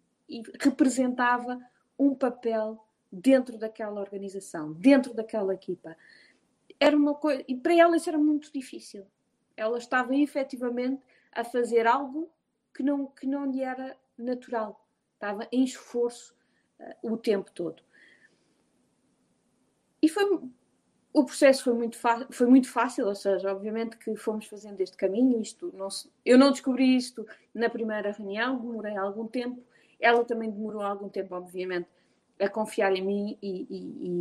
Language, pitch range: Portuguese, 215-265 Hz